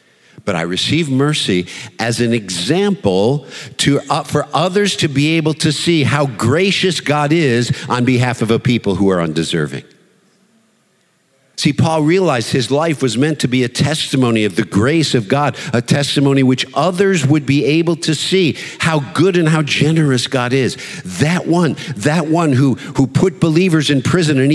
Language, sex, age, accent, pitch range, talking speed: English, male, 50-69, American, 115-160 Hz, 170 wpm